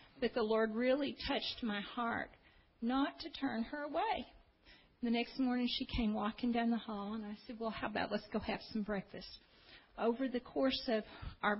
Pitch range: 205-235 Hz